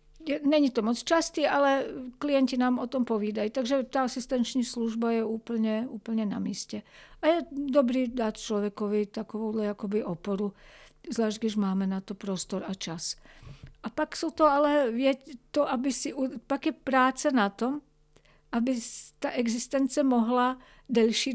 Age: 50-69